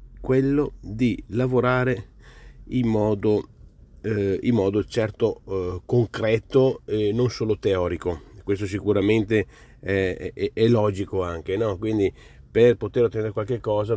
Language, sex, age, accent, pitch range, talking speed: Italian, male, 40-59, native, 95-125 Hz, 125 wpm